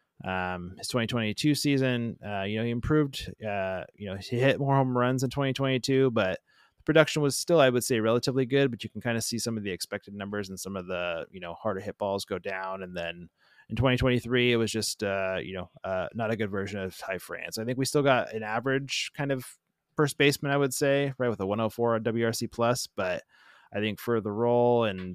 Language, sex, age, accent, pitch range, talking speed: English, male, 20-39, American, 95-125 Hz, 230 wpm